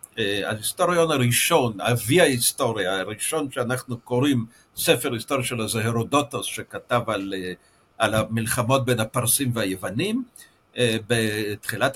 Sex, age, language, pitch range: male, 60-79, Hebrew, 115-145 Hz